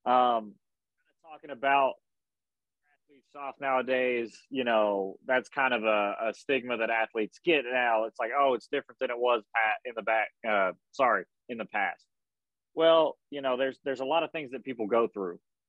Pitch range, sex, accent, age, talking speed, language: 110-130 Hz, male, American, 30-49, 180 wpm, English